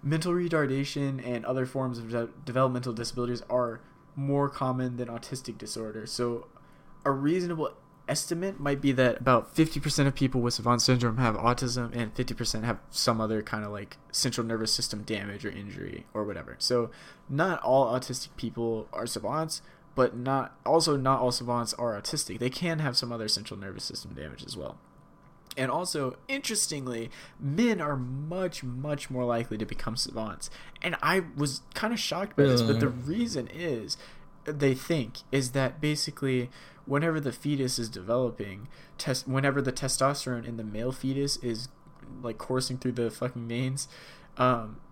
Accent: American